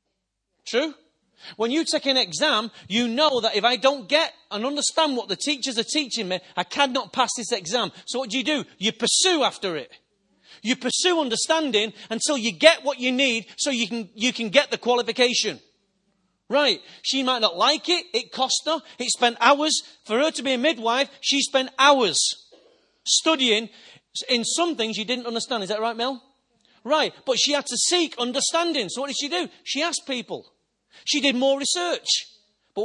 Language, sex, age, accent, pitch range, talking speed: English, male, 40-59, British, 220-290 Hz, 190 wpm